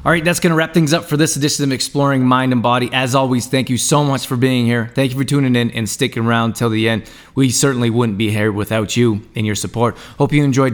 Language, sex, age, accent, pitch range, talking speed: English, male, 20-39, American, 110-130 Hz, 275 wpm